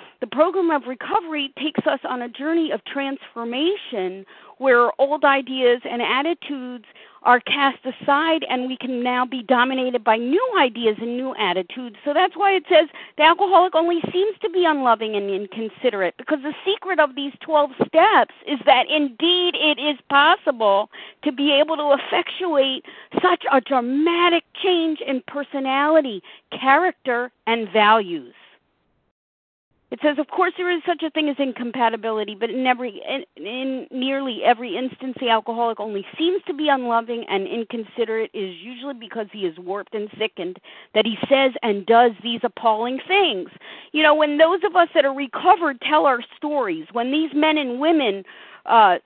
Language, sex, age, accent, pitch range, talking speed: English, female, 50-69, American, 240-320 Hz, 165 wpm